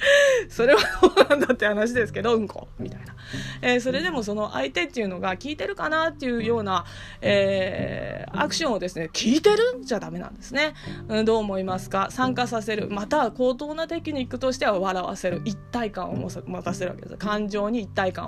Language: Japanese